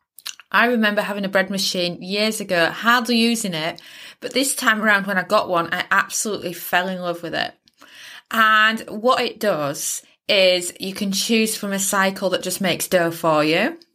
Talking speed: 185 wpm